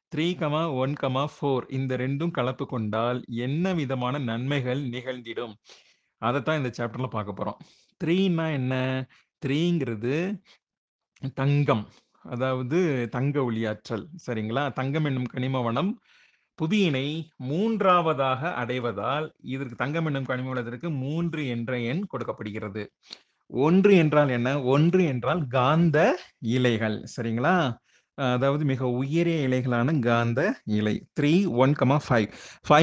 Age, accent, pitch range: 30-49, native, 125-160 Hz